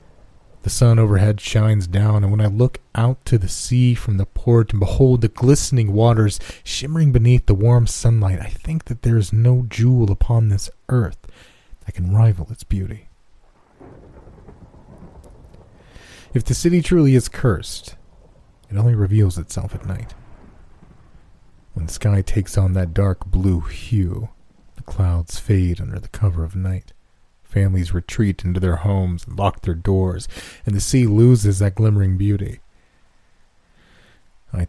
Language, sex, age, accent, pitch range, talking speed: English, male, 30-49, American, 90-110 Hz, 150 wpm